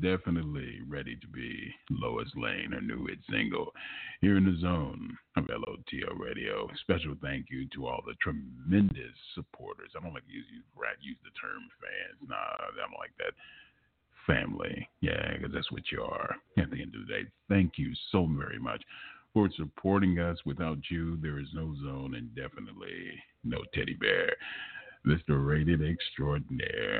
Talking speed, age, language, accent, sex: 165 wpm, 50-69, English, American, male